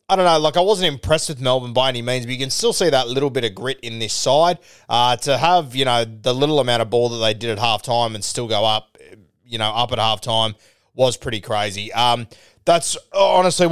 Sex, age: male, 20-39